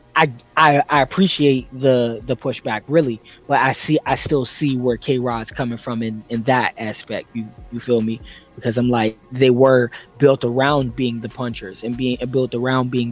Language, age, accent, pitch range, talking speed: English, 20-39, American, 120-135 Hz, 190 wpm